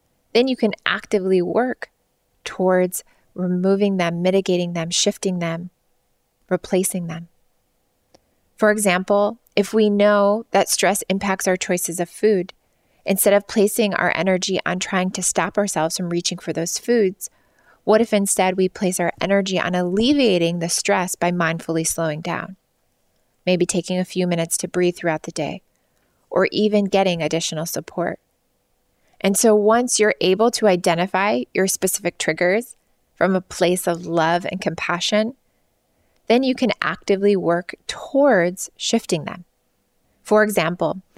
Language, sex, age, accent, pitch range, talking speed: English, female, 20-39, American, 175-210 Hz, 145 wpm